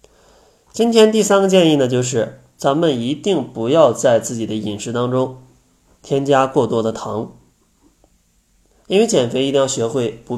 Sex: male